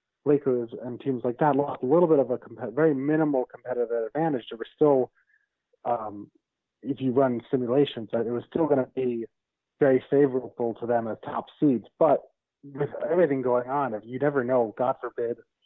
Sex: male